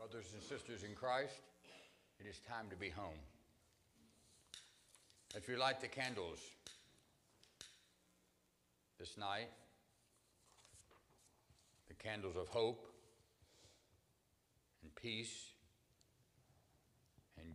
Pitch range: 90-115 Hz